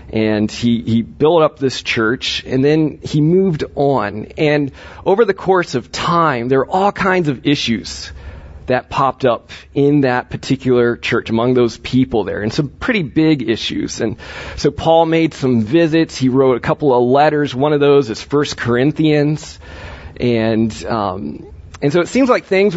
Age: 30-49